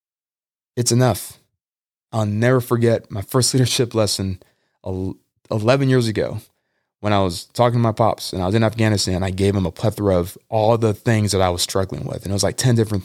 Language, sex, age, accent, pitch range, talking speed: English, male, 20-39, American, 100-120 Hz, 205 wpm